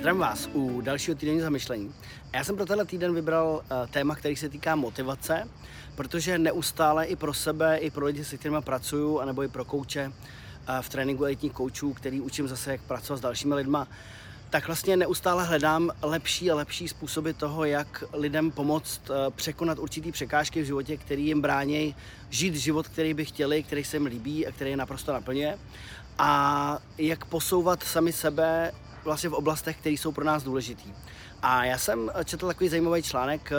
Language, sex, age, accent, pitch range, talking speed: Czech, male, 30-49, native, 135-160 Hz, 180 wpm